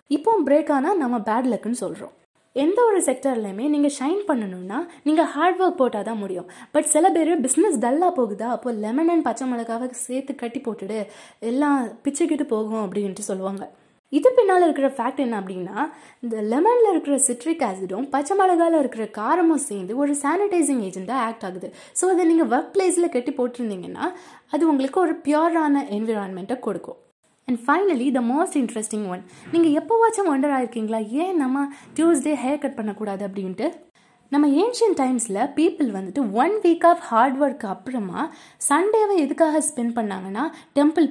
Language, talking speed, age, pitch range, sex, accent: Tamil, 155 wpm, 20-39, 230-325 Hz, female, native